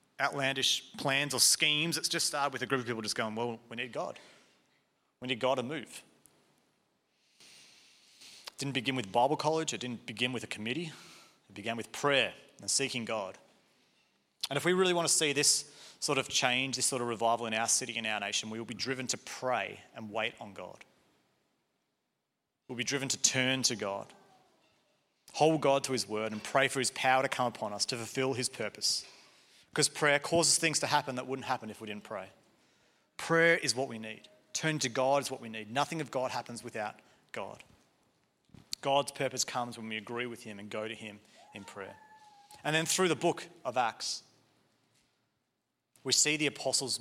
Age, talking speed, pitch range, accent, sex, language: 30-49, 195 wpm, 115-140 Hz, Australian, male, English